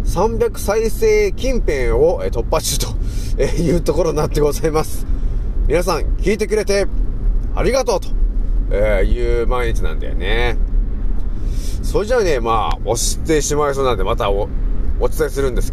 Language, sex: Japanese, male